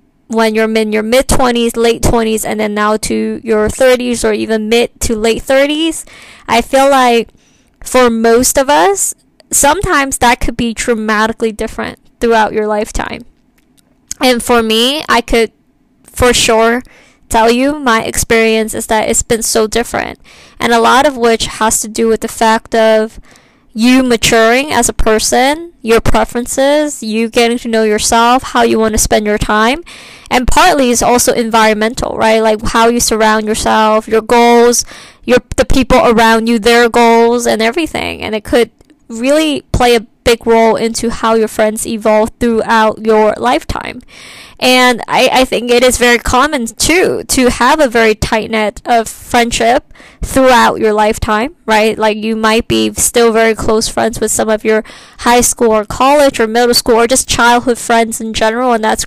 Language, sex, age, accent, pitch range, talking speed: English, female, 20-39, American, 220-250 Hz, 170 wpm